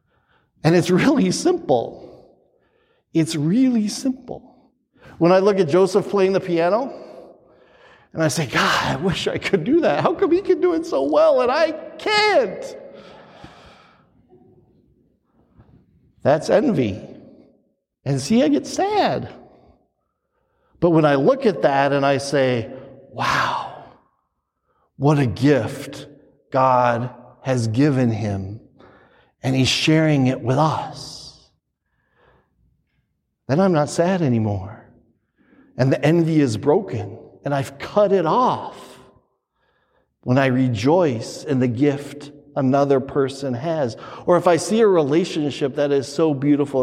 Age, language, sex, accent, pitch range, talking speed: 50-69, English, male, American, 135-175 Hz, 130 wpm